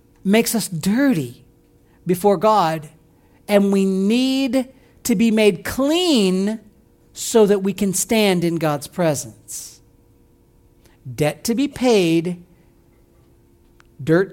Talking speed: 105 wpm